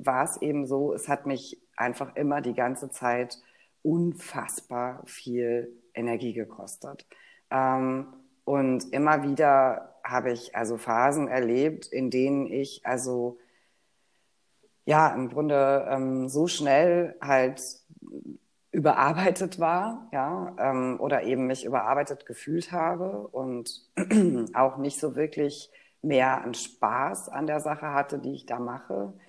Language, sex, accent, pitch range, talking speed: German, female, German, 125-145 Hz, 115 wpm